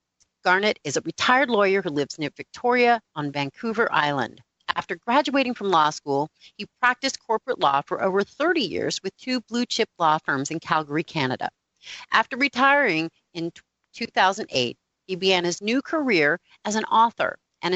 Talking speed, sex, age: 160 wpm, female, 40-59